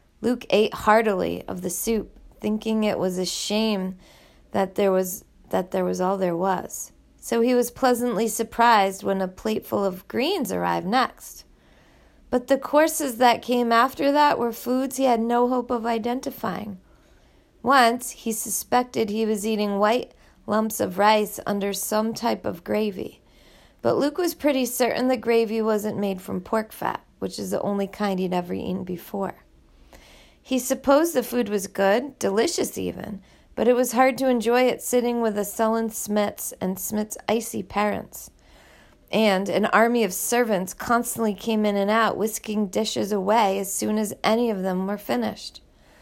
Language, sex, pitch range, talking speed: English, female, 195-240 Hz, 165 wpm